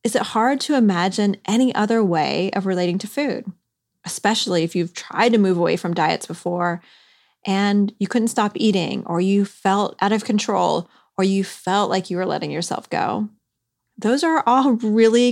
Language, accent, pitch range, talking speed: English, American, 185-225 Hz, 180 wpm